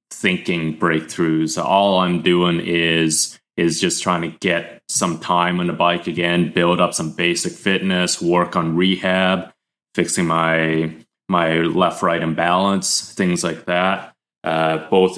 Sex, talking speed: male, 140 wpm